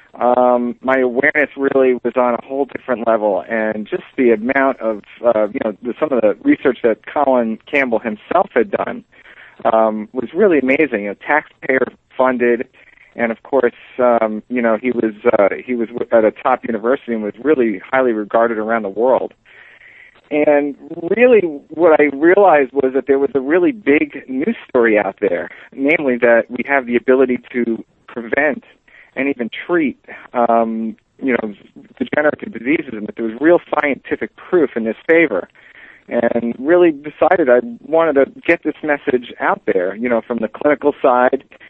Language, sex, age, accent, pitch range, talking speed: English, male, 50-69, American, 115-145 Hz, 175 wpm